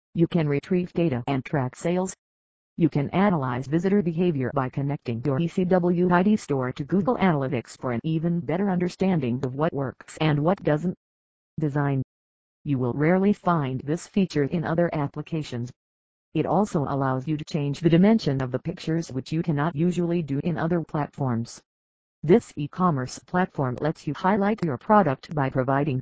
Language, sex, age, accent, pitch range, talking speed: English, female, 50-69, American, 135-175 Hz, 165 wpm